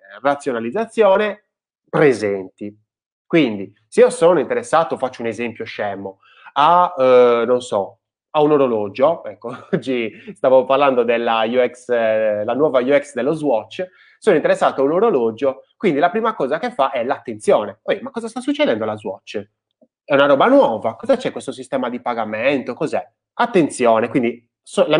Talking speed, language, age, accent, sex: 155 wpm, Italian, 20-39, native, male